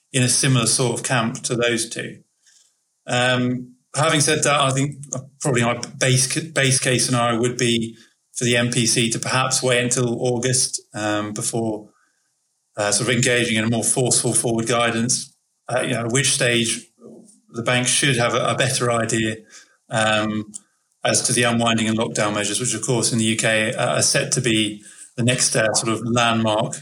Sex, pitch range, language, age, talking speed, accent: male, 115-130 Hz, English, 30-49, 175 wpm, British